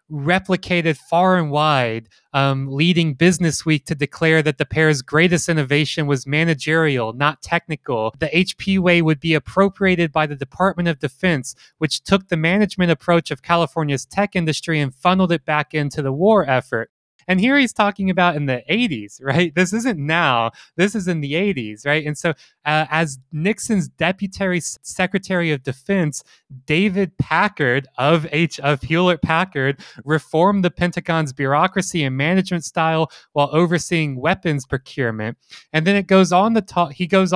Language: English